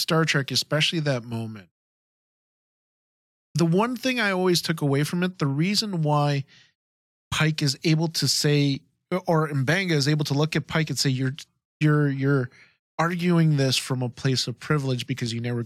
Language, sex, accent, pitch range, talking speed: English, male, American, 135-175 Hz, 175 wpm